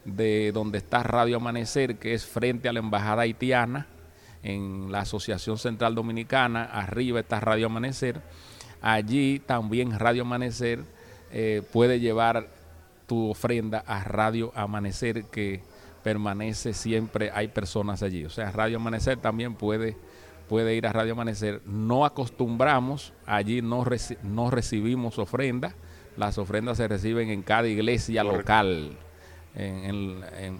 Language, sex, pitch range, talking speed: English, male, 105-125 Hz, 130 wpm